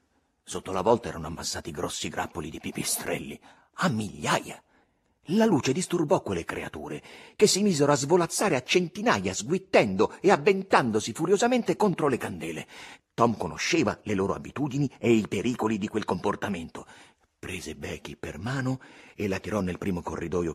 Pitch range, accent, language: 95-155 Hz, native, Italian